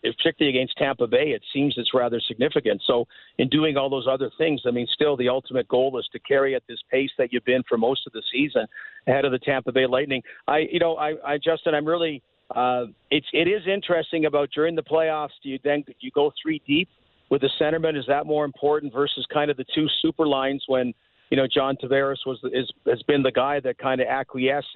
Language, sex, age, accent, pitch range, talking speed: English, male, 50-69, American, 130-155 Hz, 230 wpm